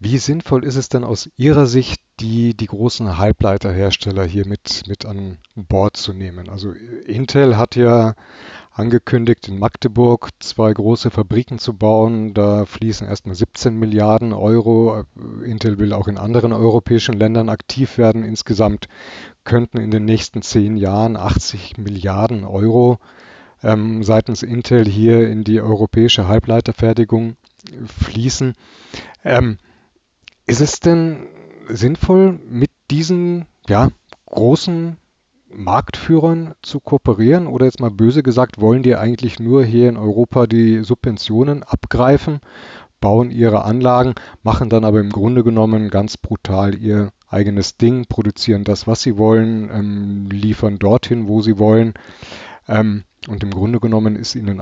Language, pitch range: German, 105-120 Hz